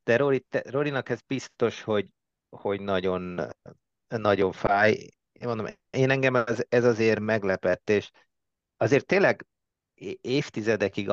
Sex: male